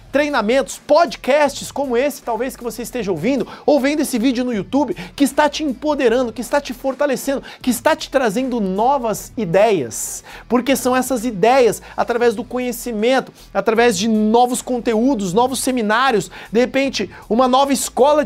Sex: male